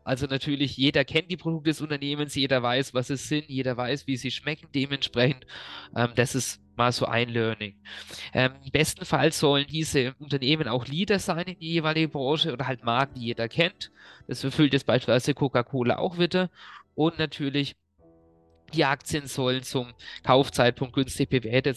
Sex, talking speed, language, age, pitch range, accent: male, 170 wpm, German, 20-39, 125-145 Hz, German